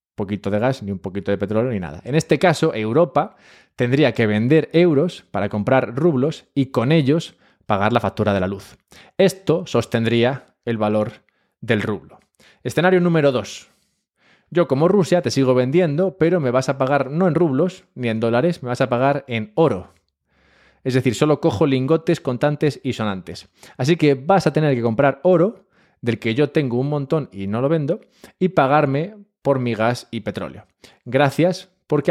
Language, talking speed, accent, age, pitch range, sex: Spanish, 180 wpm, Spanish, 20-39, 105-160 Hz, male